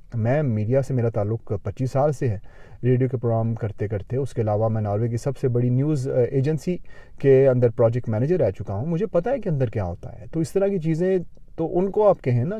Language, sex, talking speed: Urdu, male, 245 wpm